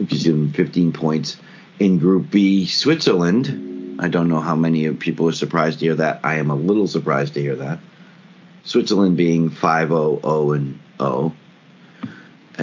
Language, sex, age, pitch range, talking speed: English, male, 50-69, 80-115 Hz, 145 wpm